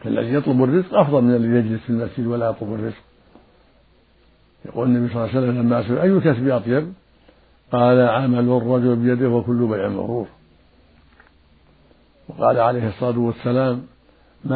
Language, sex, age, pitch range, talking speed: Arabic, male, 60-79, 110-130 Hz, 140 wpm